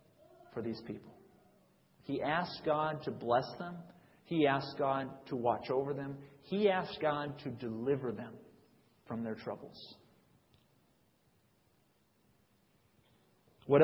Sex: male